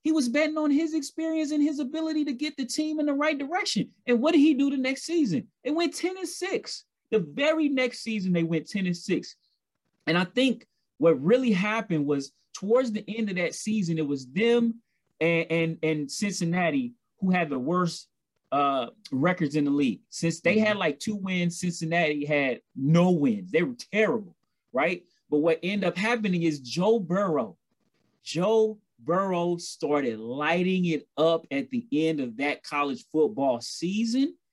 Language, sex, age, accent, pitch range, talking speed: English, male, 30-49, American, 160-235 Hz, 180 wpm